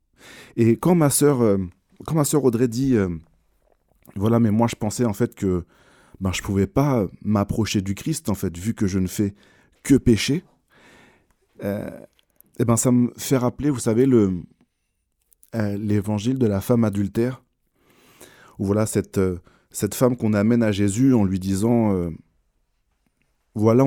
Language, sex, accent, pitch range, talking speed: French, male, French, 100-125 Hz, 160 wpm